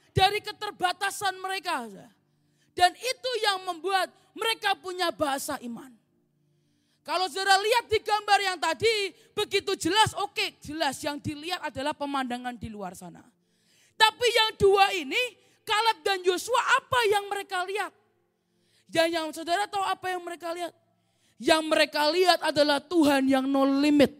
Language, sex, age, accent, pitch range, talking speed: Indonesian, female, 20-39, native, 300-415 Hz, 140 wpm